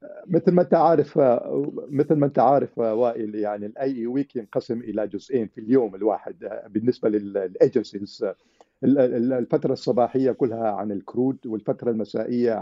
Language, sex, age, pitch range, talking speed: Arabic, male, 50-69, 110-145 Hz, 125 wpm